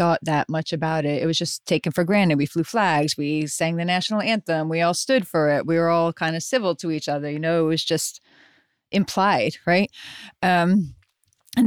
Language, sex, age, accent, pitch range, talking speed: English, female, 30-49, American, 165-200 Hz, 215 wpm